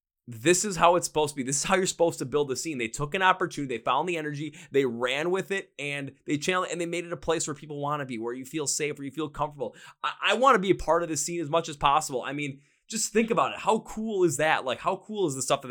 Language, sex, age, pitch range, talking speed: English, male, 20-39, 130-165 Hz, 315 wpm